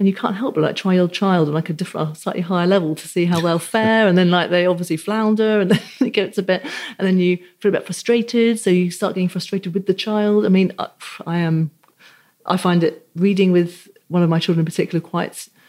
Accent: British